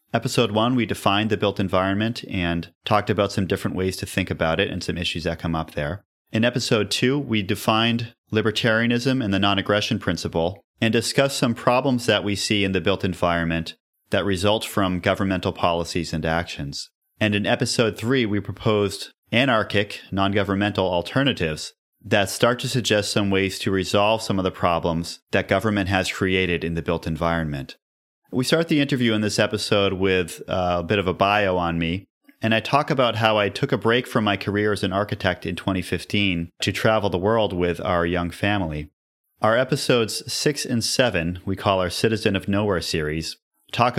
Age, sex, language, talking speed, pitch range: 30-49, male, English, 185 wpm, 90-115 Hz